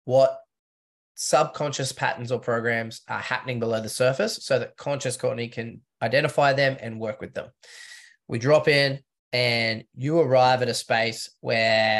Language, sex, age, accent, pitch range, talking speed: English, male, 20-39, Australian, 120-135 Hz, 155 wpm